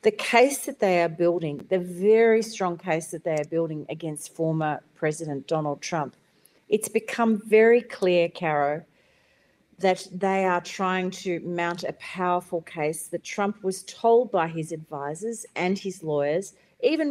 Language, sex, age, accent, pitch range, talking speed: English, female, 40-59, Australian, 170-215 Hz, 155 wpm